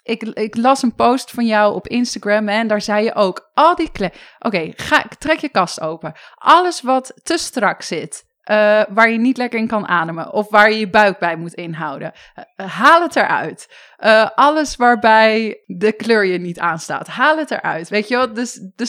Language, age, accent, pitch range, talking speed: English, 20-39, Dutch, 205-260 Hz, 210 wpm